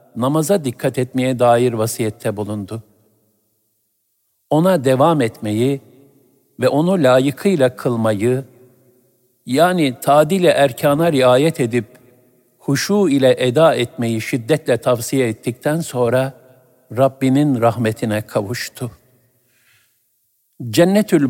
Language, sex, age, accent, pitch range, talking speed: Turkish, male, 50-69, native, 115-140 Hz, 85 wpm